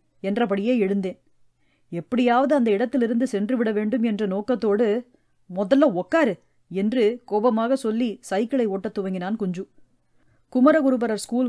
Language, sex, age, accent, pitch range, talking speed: Tamil, female, 30-49, native, 200-245 Hz, 110 wpm